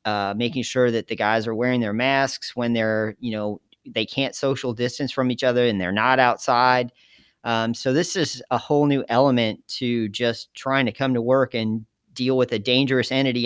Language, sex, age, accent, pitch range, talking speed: English, male, 40-59, American, 110-130 Hz, 205 wpm